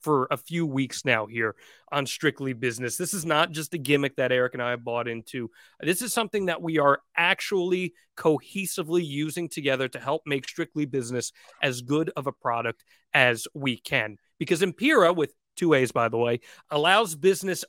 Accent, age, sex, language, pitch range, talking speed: American, 30-49, male, English, 145-190 Hz, 185 wpm